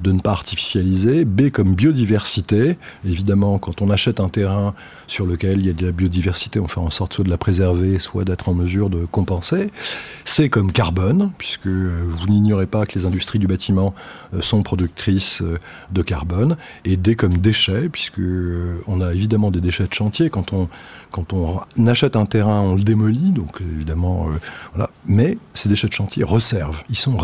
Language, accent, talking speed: French, French, 185 wpm